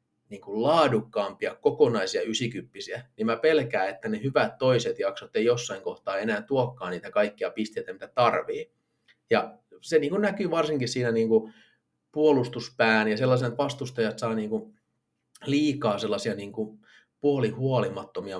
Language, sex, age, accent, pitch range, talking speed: Finnish, male, 30-49, native, 110-165 Hz, 125 wpm